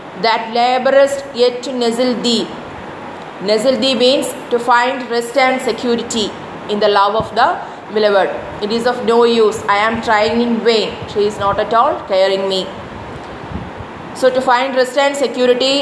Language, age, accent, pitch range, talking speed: English, 30-49, Indian, 215-265 Hz, 165 wpm